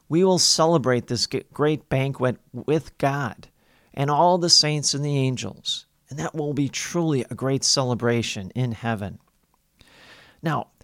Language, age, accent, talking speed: English, 40-59, American, 145 wpm